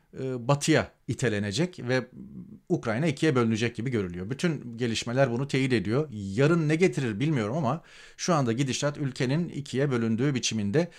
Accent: native